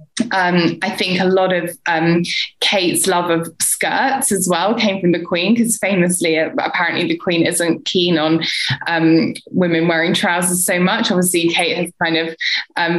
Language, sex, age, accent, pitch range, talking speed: English, female, 10-29, British, 165-185 Hz, 170 wpm